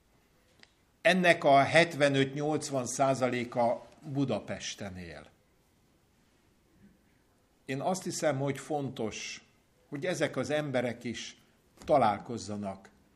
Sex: male